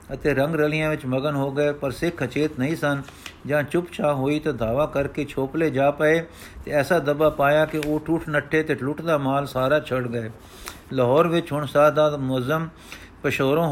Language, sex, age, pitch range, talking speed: Punjabi, male, 50-69, 130-150 Hz, 180 wpm